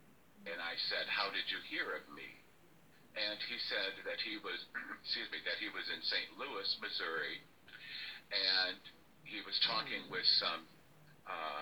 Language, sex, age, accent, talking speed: English, male, 50-69, American, 160 wpm